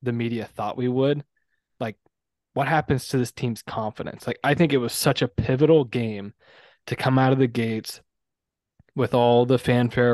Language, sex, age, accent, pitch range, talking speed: English, male, 20-39, American, 115-130 Hz, 185 wpm